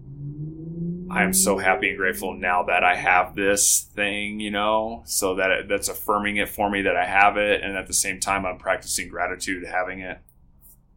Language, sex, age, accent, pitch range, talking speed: English, male, 20-39, American, 85-100 Hz, 185 wpm